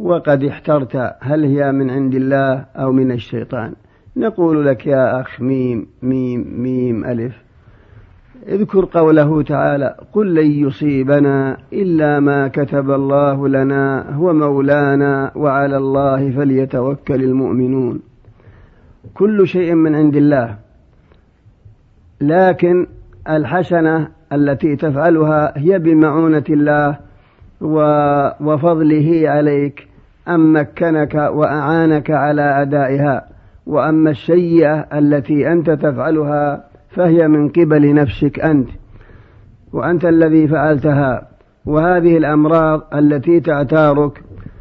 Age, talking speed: 50-69, 95 wpm